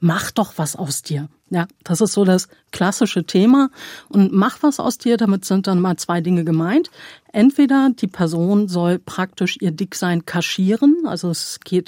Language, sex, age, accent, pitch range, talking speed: German, female, 50-69, German, 170-220 Hz, 175 wpm